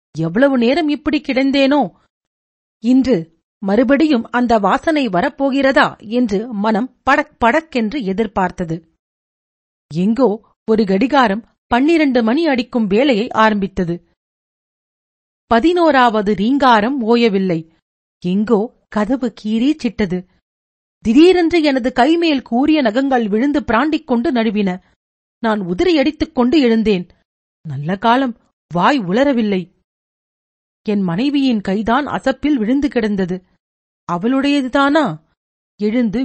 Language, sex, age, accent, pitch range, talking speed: Tamil, female, 40-59, native, 190-265 Hz, 90 wpm